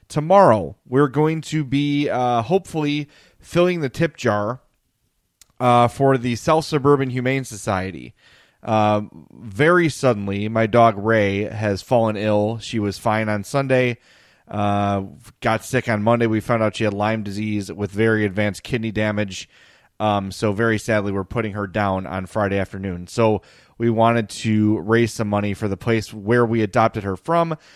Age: 30-49